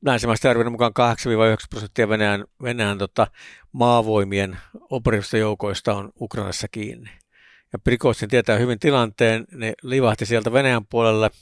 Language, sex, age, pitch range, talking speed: Finnish, male, 60-79, 105-125 Hz, 120 wpm